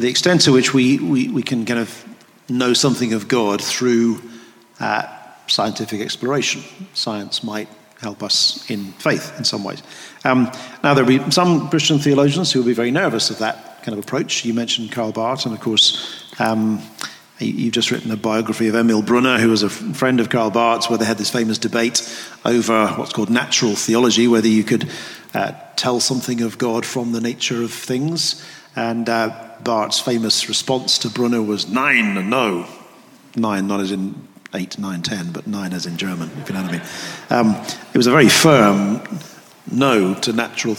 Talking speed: 190 wpm